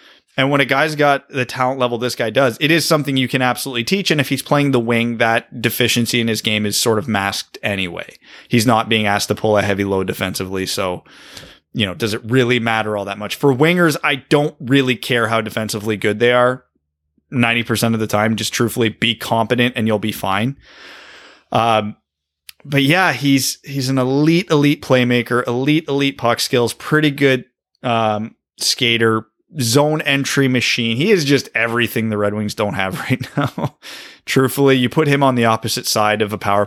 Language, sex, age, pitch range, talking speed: English, male, 30-49, 105-135 Hz, 195 wpm